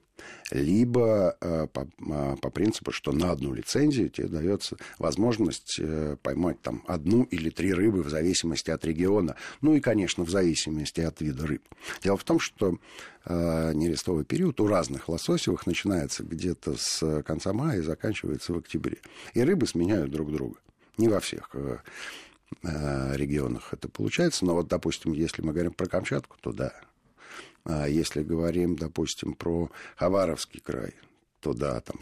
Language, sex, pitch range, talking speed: Russian, male, 75-90 Hz, 155 wpm